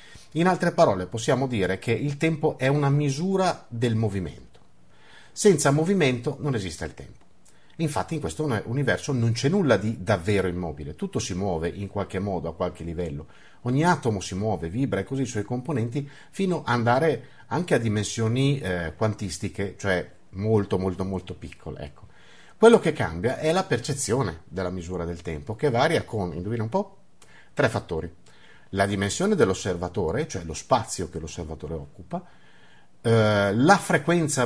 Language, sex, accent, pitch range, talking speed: Italian, male, native, 95-140 Hz, 155 wpm